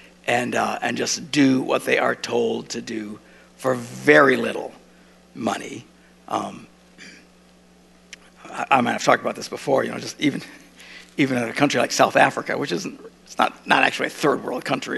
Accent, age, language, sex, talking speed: American, 60-79, English, male, 180 wpm